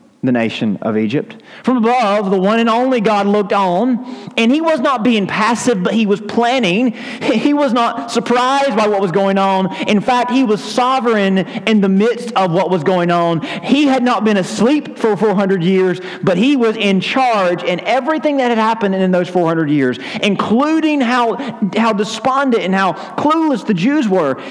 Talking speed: 190 wpm